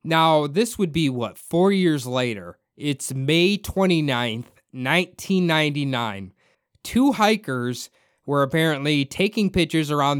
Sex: male